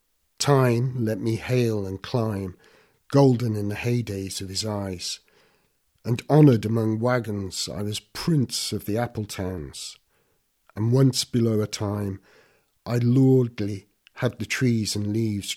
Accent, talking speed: British, 140 wpm